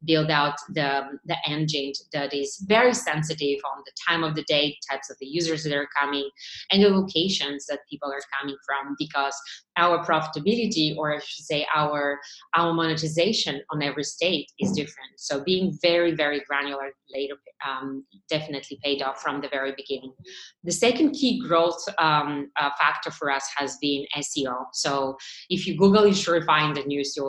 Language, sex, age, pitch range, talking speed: English, female, 30-49, 140-160 Hz, 180 wpm